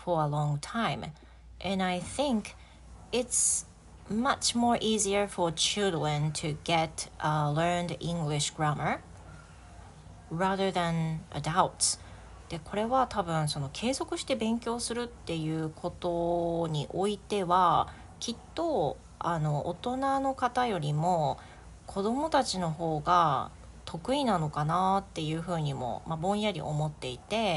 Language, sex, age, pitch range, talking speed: English, female, 30-49, 150-210 Hz, 45 wpm